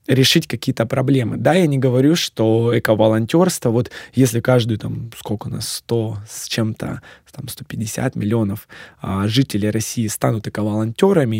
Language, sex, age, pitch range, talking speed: Russian, male, 20-39, 110-130 Hz, 135 wpm